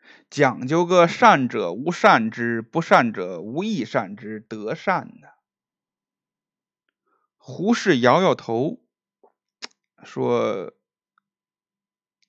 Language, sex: Chinese, male